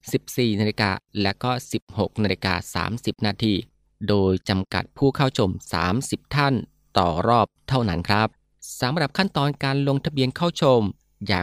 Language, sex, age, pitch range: Thai, male, 20-39, 100-135 Hz